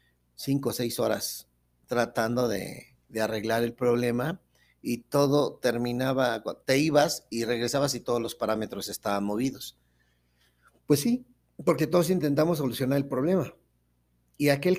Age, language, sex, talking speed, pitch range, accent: 50-69, Spanish, male, 135 wpm, 105-145 Hz, Mexican